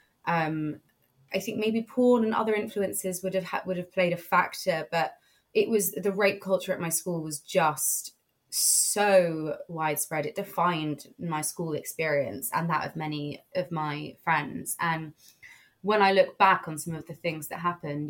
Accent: British